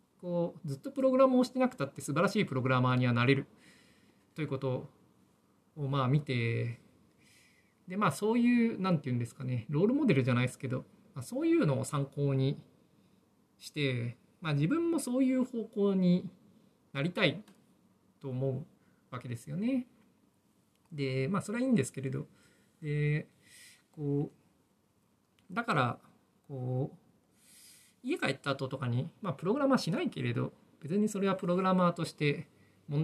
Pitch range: 135-200 Hz